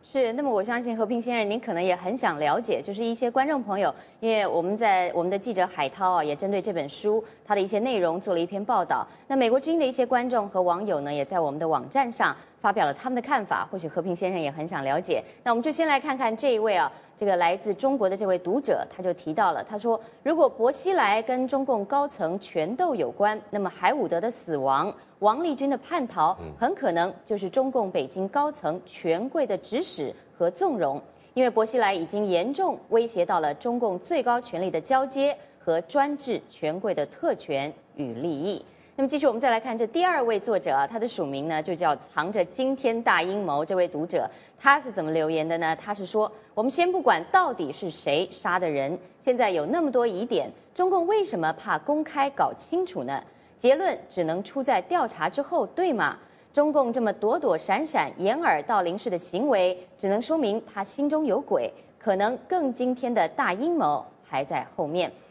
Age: 20-39